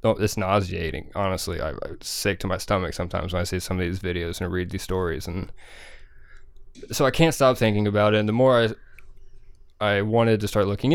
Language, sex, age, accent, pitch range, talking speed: English, male, 20-39, American, 95-115 Hz, 215 wpm